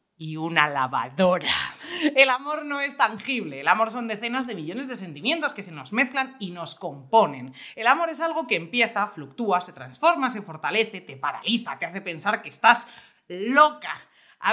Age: 30-49